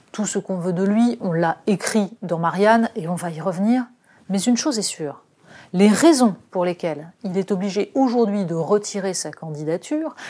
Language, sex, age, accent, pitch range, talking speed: French, female, 30-49, French, 180-230 Hz, 190 wpm